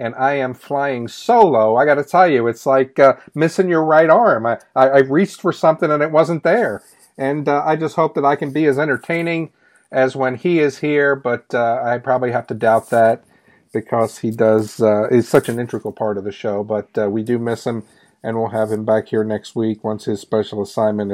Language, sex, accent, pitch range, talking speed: English, male, American, 120-190 Hz, 230 wpm